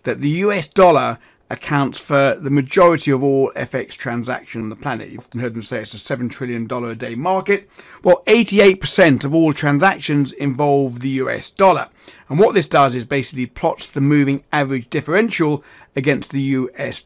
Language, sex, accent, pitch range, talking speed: English, male, British, 125-170 Hz, 175 wpm